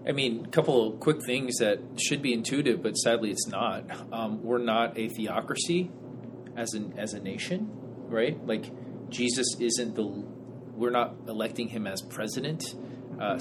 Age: 30-49